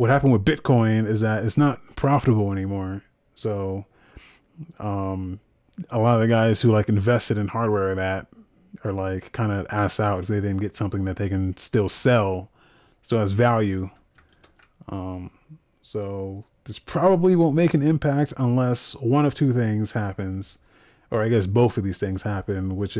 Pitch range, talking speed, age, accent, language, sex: 100-130 Hz, 170 wpm, 30-49, American, English, male